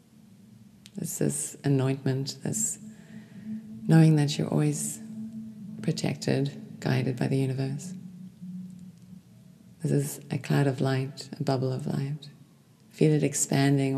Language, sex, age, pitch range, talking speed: English, female, 30-49, 130-155 Hz, 110 wpm